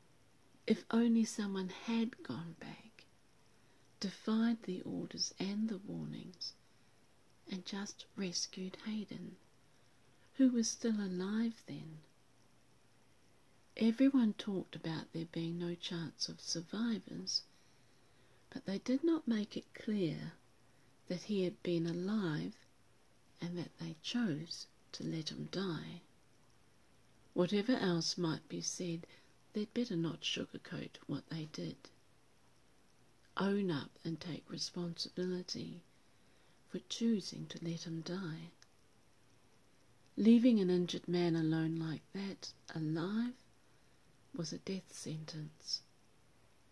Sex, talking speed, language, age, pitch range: female, 110 wpm, English, 50-69, 145-200 Hz